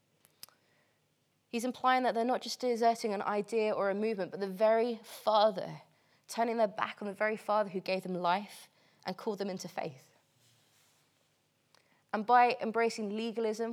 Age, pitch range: 20-39, 185-225 Hz